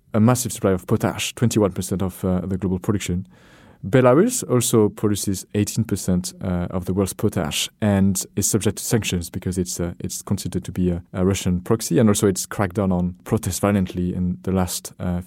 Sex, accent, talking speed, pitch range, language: male, French, 190 wpm, 95-115 Hz, English